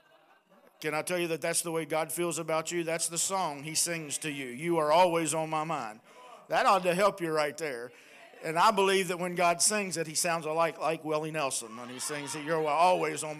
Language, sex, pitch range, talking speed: English, male, 160-200 Hz, 235 wpm